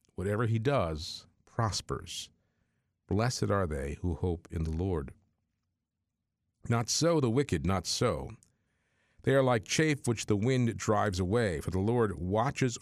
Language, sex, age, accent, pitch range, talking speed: English, male, 50-69, American, 85-110 Hz, 145 wpm